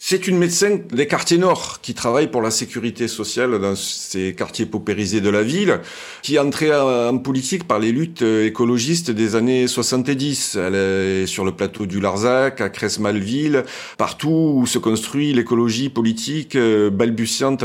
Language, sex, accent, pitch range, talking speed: French, male, French, 110-140 Hz, 160 wpm